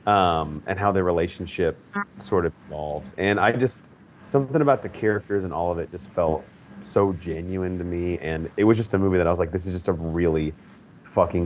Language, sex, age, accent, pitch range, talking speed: English, male, 30-49, American, 85-110 Hz, 215 wpm